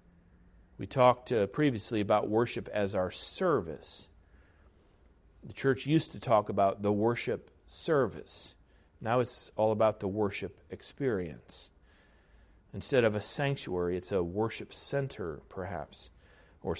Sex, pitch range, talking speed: male, 90-135 Hz, 125 wpm